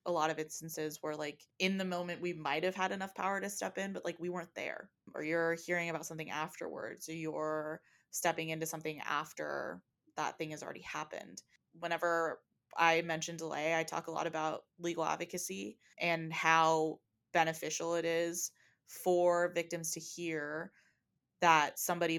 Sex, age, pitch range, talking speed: female, 20-39, 155-175 Hz, 170 wpm